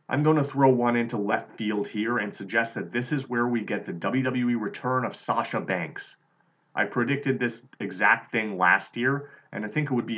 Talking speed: 210 wpm